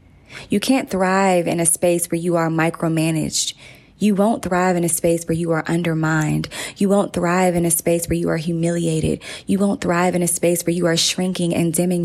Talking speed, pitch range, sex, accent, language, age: 210 wpm, 165-190 Hz, female, American, English, 20-39